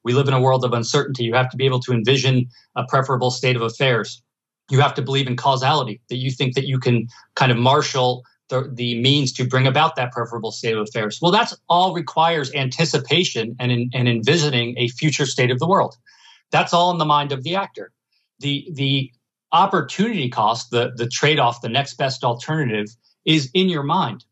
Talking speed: 200 wpm